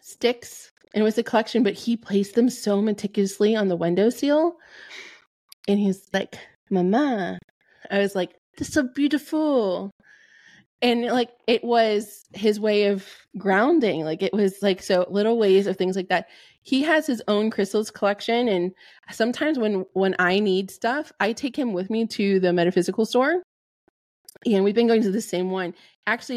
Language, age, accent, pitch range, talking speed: English, 20-39, American, 185-225 Hz, 175 wpm